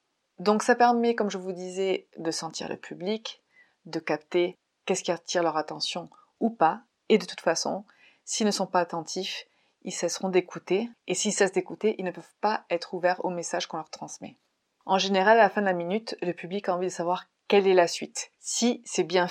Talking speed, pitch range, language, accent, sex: 210 wpm, 175-215 Hz, French, French, female